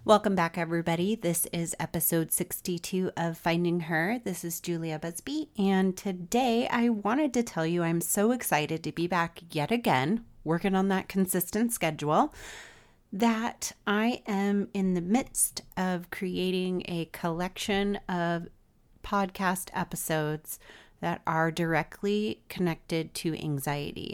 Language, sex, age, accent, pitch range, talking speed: English, female, 30-49, American, 155-190 Hz, 130 wpm